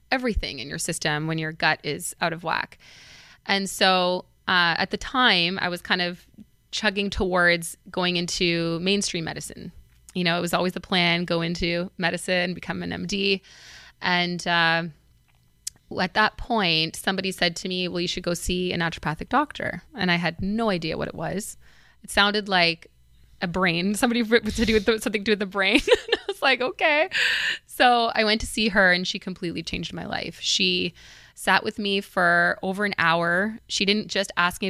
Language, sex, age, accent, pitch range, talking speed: English, female, 20-39, American, 175-200 Hz, 185 wpm